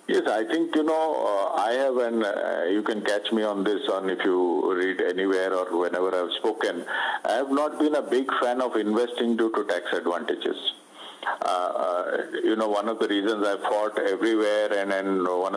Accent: Indian